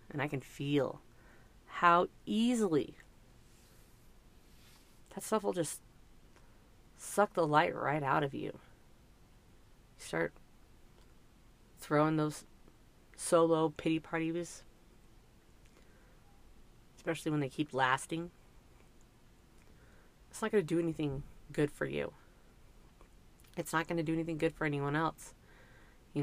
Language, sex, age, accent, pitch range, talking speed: English, female, 30-49, American, 135-165 Hz, 110 wpm